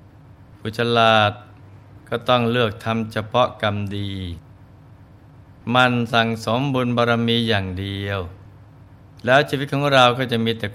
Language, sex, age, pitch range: Thai, male, 20-39, 100-120 Hz